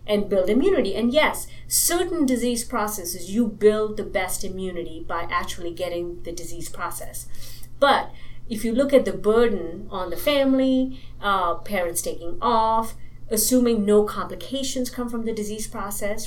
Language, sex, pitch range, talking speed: English, female, 180-235 Hz, 150 wpm